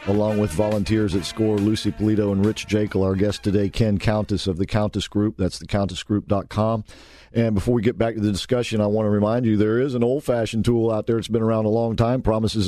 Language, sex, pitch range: English, male, 105-130 Hz